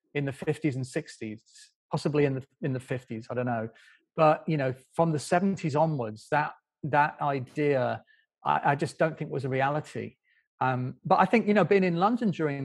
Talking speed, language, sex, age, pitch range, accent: 200 wpm, English, male, 40-59, 140-170 Hz, British